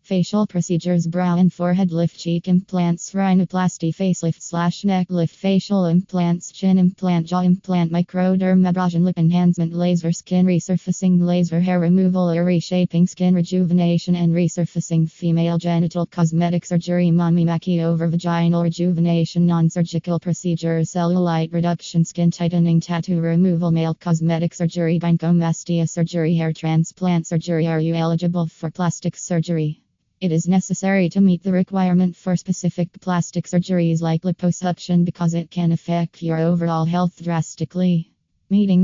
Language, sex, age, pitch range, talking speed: English, female, 20-39, 165-180 Hz, 135 wpm